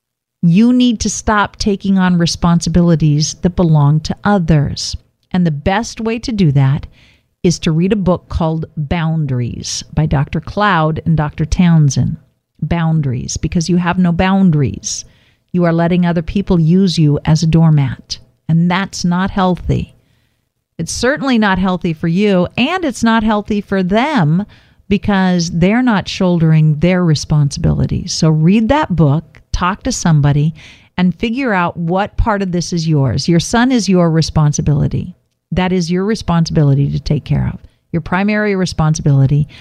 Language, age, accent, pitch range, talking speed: English, 50-69, American, 155-195 Hz, 155 wpm